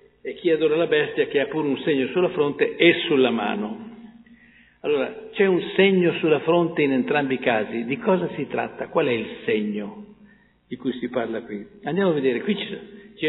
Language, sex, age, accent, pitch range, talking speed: Italian, male, 60-79, native, 145-225 Hz, 200 wpm